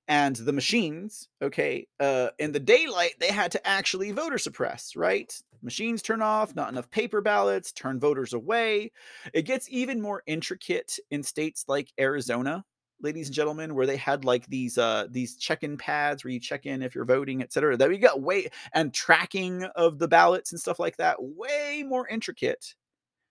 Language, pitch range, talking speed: English, 140-215 Hz, 185 wpm